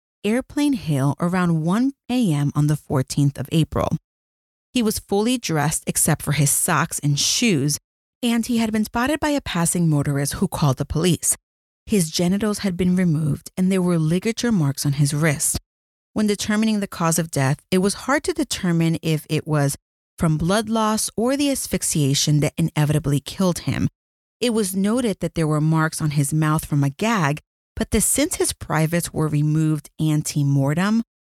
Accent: American